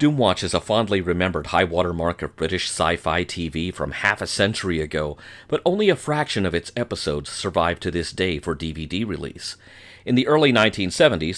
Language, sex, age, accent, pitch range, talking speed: English, male, 40-59, American, 85-110 Hz, 180 wpm